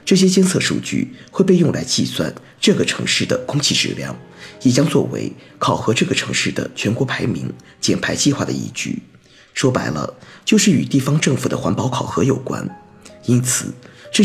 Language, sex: Chinese, male